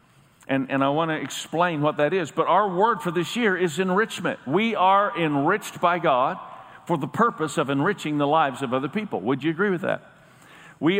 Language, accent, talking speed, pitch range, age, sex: English, American, 205 wpm, 175-235 Hz, 50-69, male